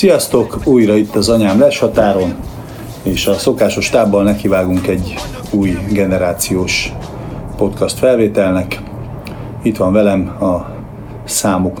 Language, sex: Hungarian, male